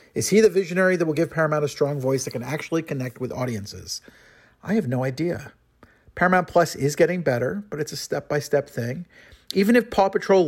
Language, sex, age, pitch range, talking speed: English, male, 50-69, 125-180 Hz, 200 wpm